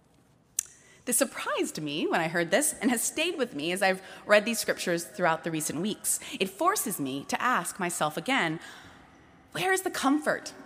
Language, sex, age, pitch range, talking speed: English, female, 30-49, 185-265 Hz, 180 wpm